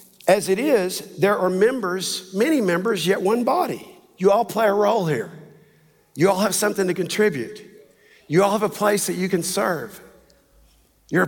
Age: 50-69